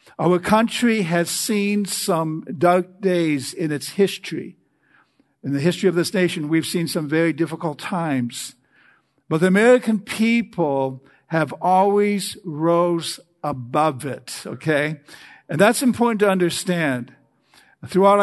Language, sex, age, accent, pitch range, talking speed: English, male, 60-79, American, 155-195 Hz, 125 wpm